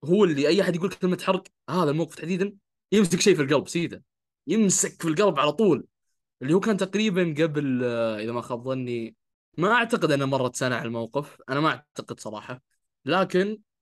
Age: 20-39